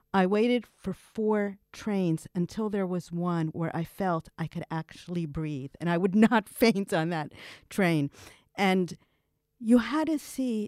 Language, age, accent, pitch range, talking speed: English, 50-69, American, 165-230 Hz, 165 wpm